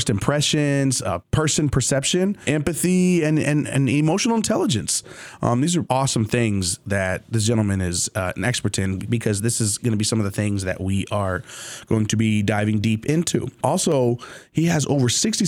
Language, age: English, 20-39